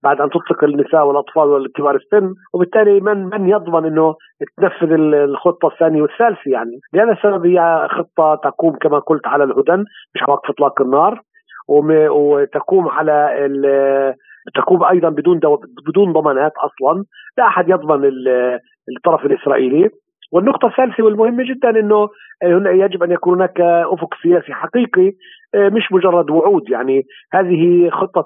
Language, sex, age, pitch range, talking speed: Arabic, male, 50-69, 145-200 Hz, 140 wpm